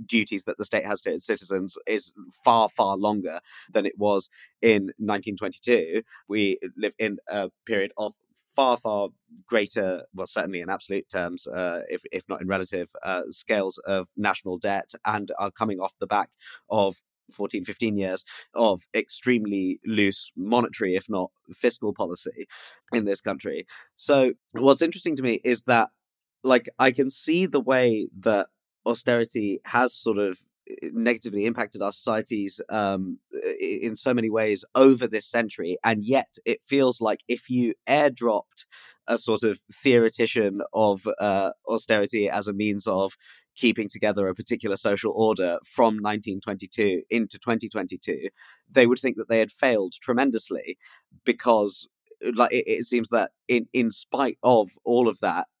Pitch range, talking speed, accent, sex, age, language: 100-125 Hz, 155 wpm, British, male, 20-39, English